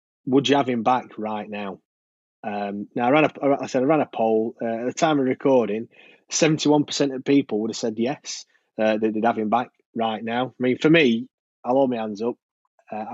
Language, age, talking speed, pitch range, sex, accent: English, 20-39, 235 wpm, 110-130 Hz, male, British